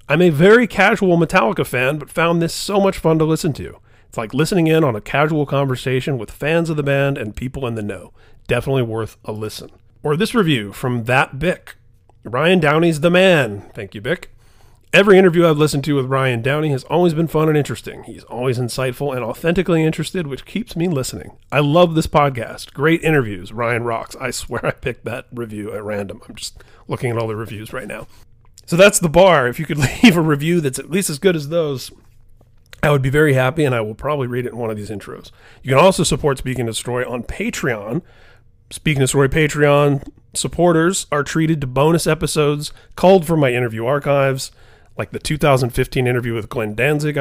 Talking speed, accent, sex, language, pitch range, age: 205 wpm, American, male, English, 115-160 Hz, 40-59